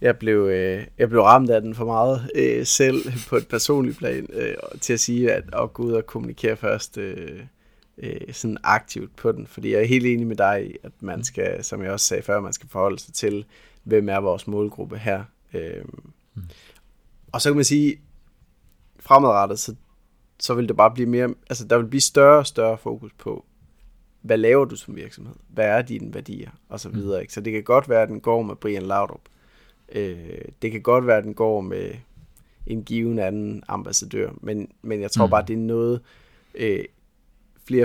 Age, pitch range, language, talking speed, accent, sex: 20-39, 100-120 Hz, Danish, 190 wpm, native, male